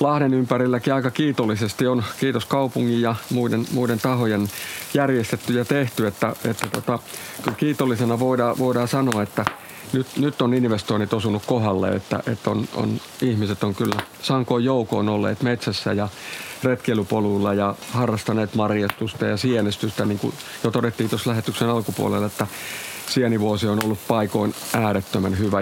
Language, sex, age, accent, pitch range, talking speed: Finnish, male, 50-69, native, 105-130 Hz, 145 wpm